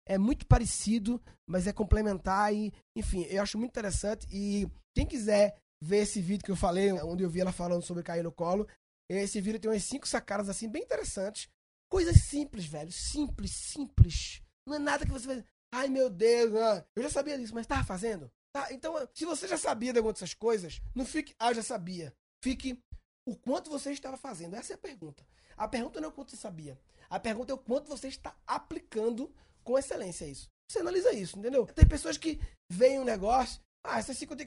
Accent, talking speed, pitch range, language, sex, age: Brazilian, 205 wpm, 195-275 Hz, Portuguese, male, 20-39